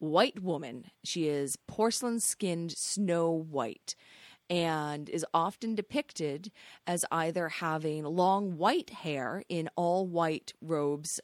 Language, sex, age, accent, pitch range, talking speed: English, female, 30-49, American, 150-180 Hz, 120 wpm